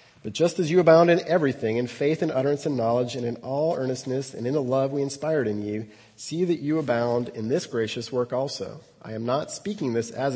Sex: male